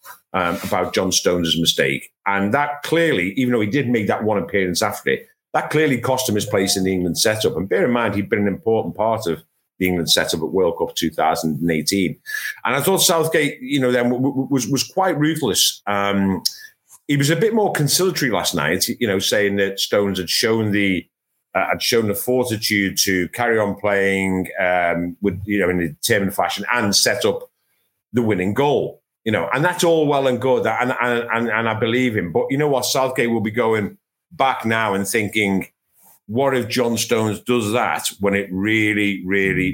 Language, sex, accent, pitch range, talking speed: English, male, British, 95-130 Hz, 200 wpm